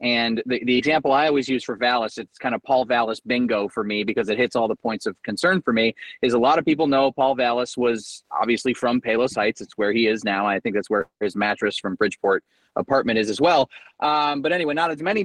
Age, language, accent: 30-49, English, American